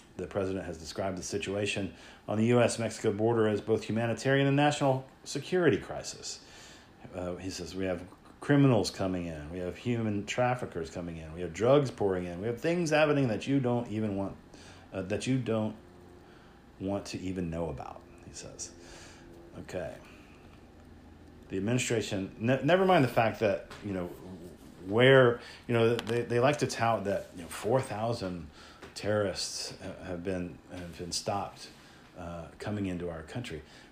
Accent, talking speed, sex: American, 160 wpm, male